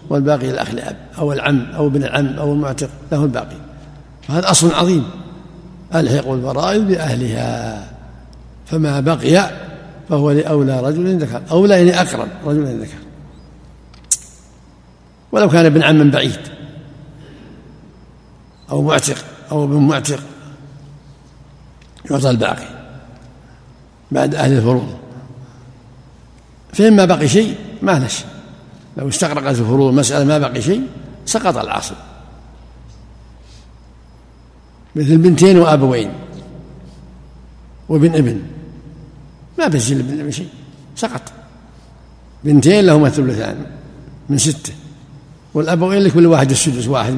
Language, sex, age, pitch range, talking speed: Arabic, male, 60-79, 125-155 Hz, 100 wpm